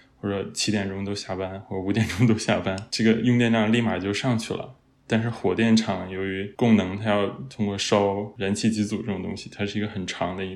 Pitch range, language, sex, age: 95-110 Hz, Chinese, male, 20-39